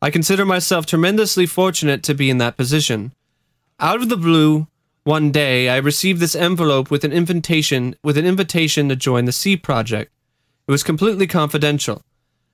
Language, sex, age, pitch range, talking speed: English, male, 30-49, 130-170 Hz, 165 wpm